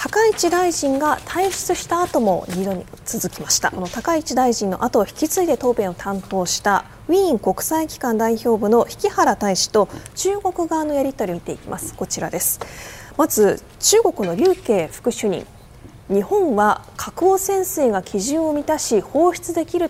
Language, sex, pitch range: Japanese, female, 220-350 Hz